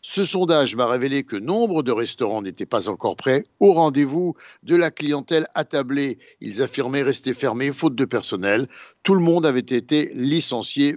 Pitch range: 135-175 Hz